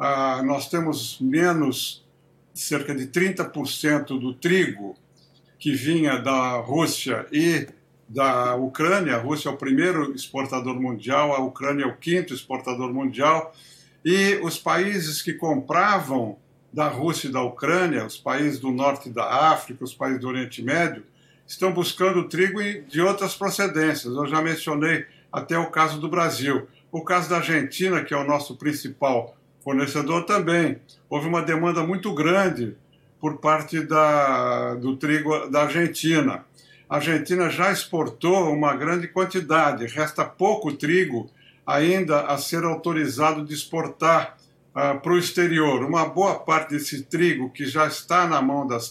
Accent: Brazilian